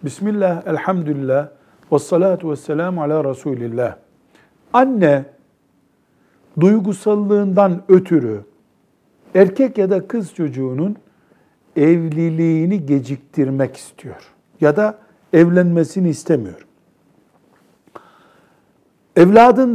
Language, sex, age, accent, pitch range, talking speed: Turkish, male, 60-79, native, 145-200 Hz, 75 wpm